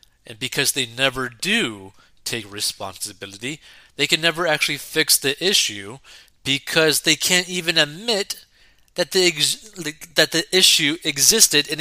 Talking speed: 135 wpm